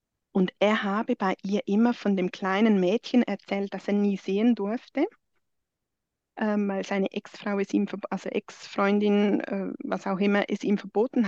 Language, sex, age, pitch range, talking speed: German, female, 20-39, 195-230 Hz, 180 wpm